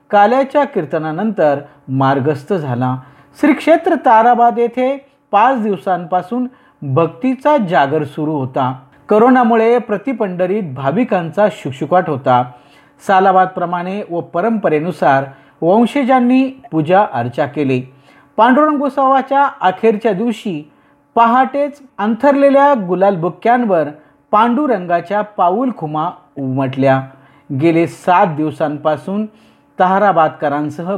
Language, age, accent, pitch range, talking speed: Marathi, 50-69, native, 150-235 Hz, 60 wpm